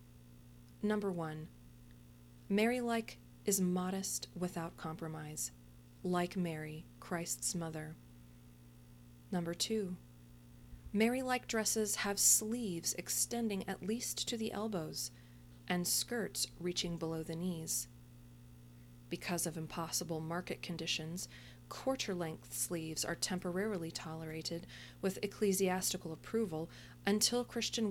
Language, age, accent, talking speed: English, 30-49, American, 95 wpm